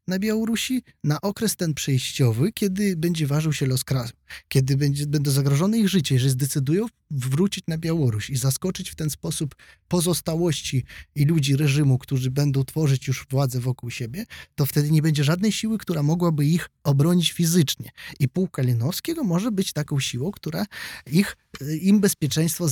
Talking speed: 160 wpm